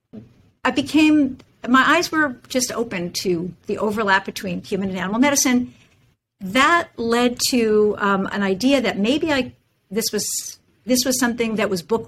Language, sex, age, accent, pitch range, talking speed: English, female, 50-69, American, 195-255 Hz, 160 wpm